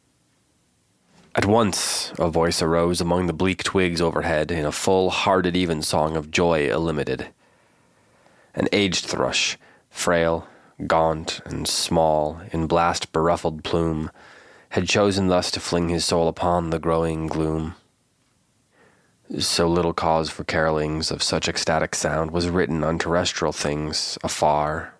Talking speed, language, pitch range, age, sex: 130 wpm, English, 80-90 Hz, 30-49, male